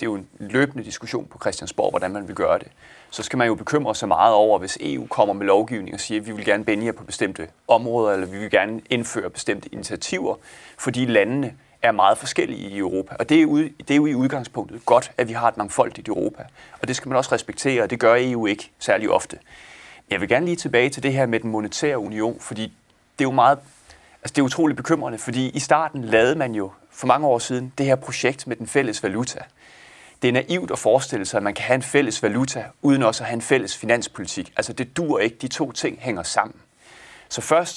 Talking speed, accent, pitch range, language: 235 wpm, native, 110-135 Hz, Danish